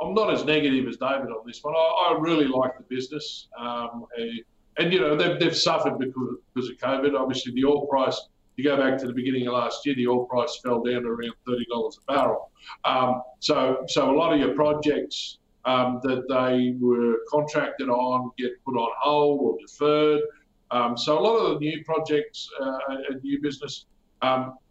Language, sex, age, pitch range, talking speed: English, male, 50-69, 130-150 Hz, 205 wpm